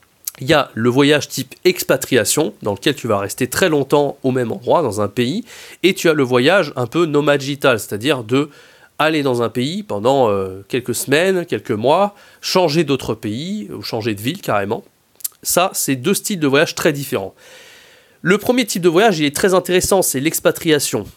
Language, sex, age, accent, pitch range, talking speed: French, male, 30-49, French, 130-185 Hz, 185 wpm